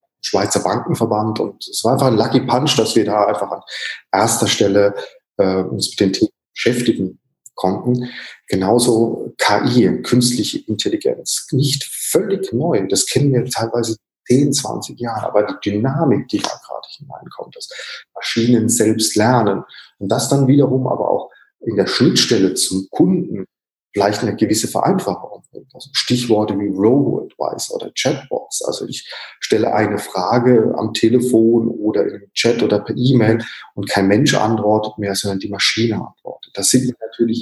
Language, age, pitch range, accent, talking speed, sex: German, 40-59, 105-135 Hz, German, 155 wpm, male